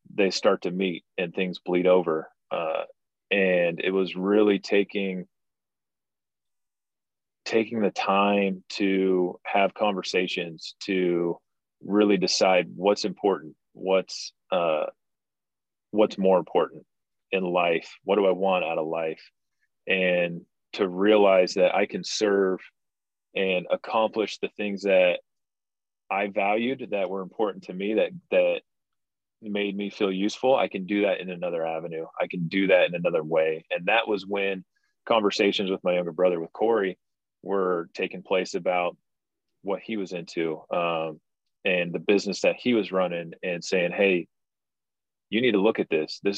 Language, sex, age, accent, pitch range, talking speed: English, male, 30-49, American, 90-100 Hz, 150 wpm